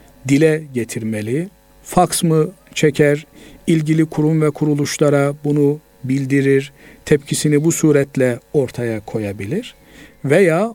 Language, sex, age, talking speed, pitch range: Turkish, male, 50-69, 95 wpm, 135-160 Hz